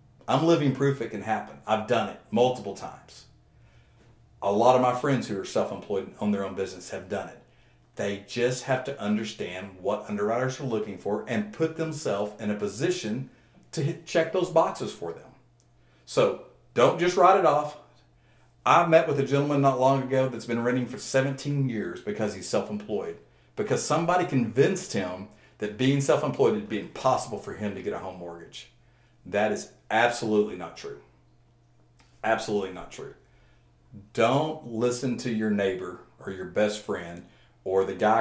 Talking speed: 170 wpm